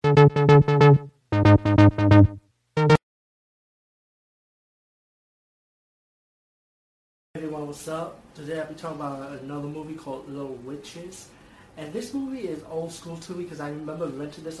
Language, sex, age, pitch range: English, male, 30-49, 130-160 Hz